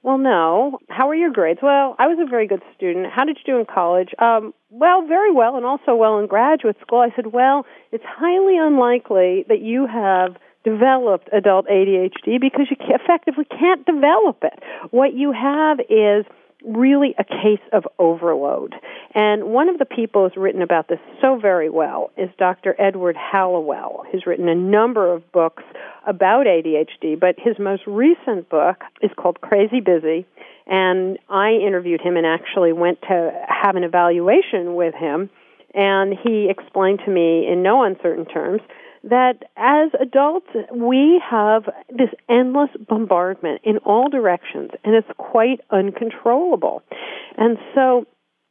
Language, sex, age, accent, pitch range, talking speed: English, female, 50-69, American, 185-265 Hz, 160 wpm